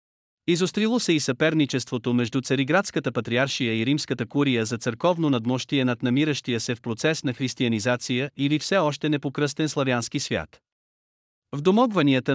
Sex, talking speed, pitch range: male, 135 wpm, 120-150 Hz